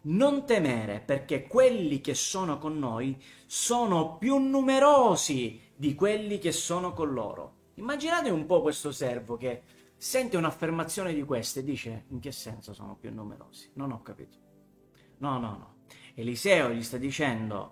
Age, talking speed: 30-49, 150 wpm